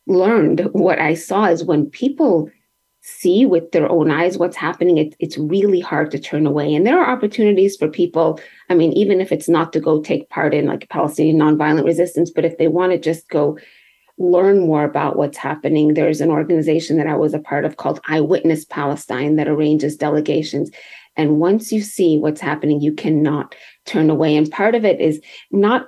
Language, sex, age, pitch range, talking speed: English, female, 30-49, 155-185 Hz, 195 wpm